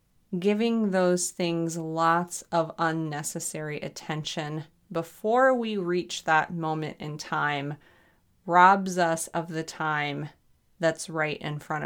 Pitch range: 160-185 Hz